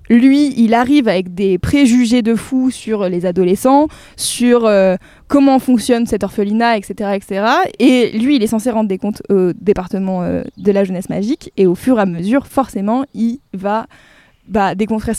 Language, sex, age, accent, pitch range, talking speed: French, female, 20-39, French, 205-245 Hz, 180 wpm